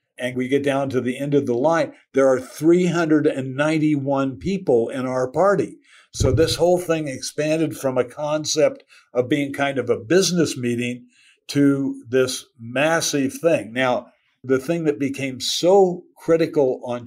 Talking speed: 155 wpm